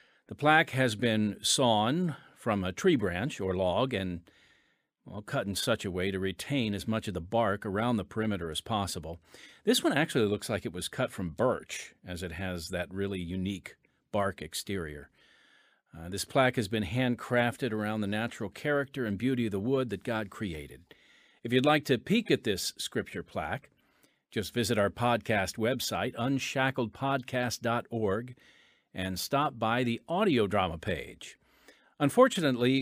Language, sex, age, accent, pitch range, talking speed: English, male, 50-69, American, 100-135 Hz, 165 wpm